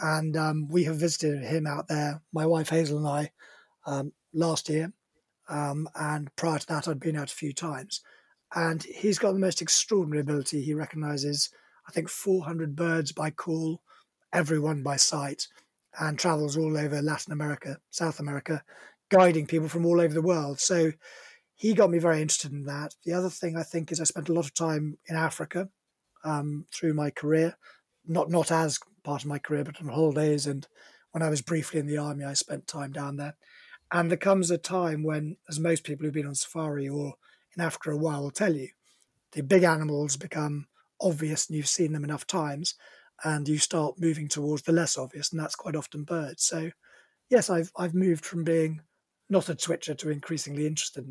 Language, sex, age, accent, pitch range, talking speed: English, male, 20-39, British, 150-170 Hz, 195 wpm